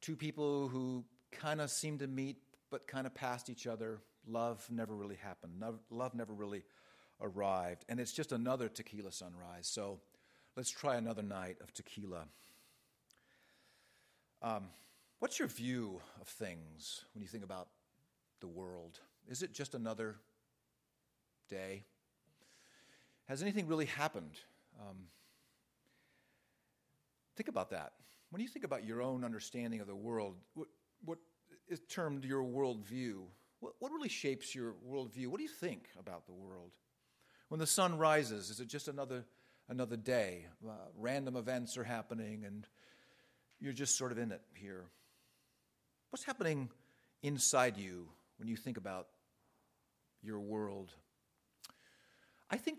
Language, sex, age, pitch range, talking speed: English, male, 50-69, 100-135 Hz, 140 wpm